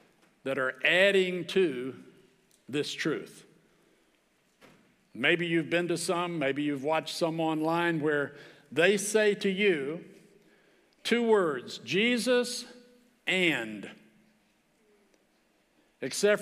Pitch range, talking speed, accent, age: 165-200 Hz, 95 wpm, American, 60-79